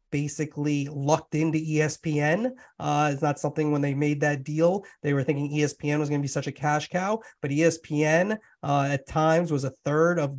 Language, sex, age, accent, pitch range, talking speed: English, male, 30-49, American, 150-170 Hz, 195 wpm